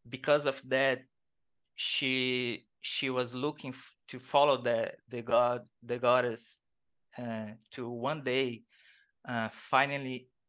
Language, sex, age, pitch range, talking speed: English, male, 20-39, 115-135 Hz, 120 wpm